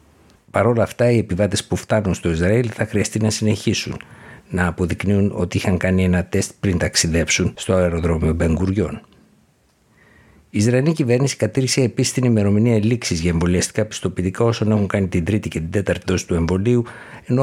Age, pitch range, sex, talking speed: 60-79, 90-115 Hz, male, 165 wpm